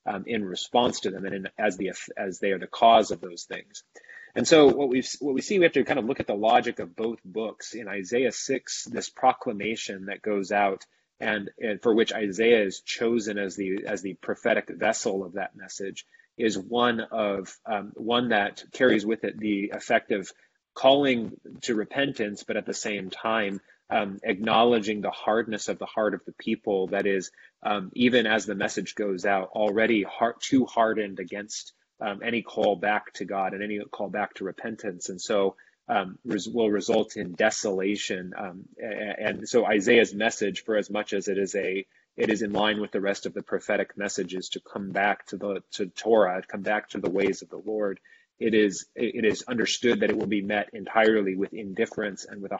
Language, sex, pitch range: English, male, 100-110 Hz